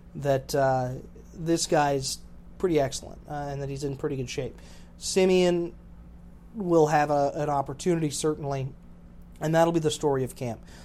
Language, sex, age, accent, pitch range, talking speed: English, male, 30-49, American, 140-175 Hz, 155 wpm